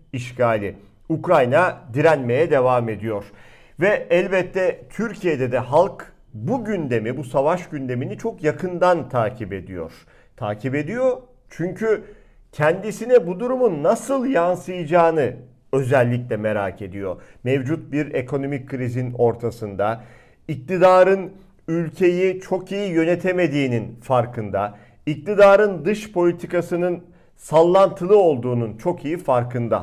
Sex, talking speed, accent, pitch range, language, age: male, 100 wpm, native, 125-185 Hz, Turkish, 50-69